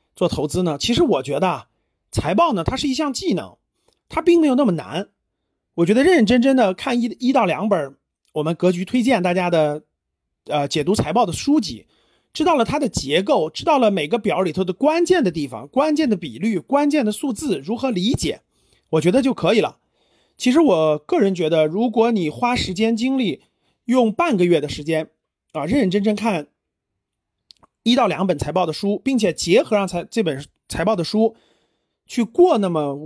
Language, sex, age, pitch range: Chinese, male, 30-49, 170-270 Hz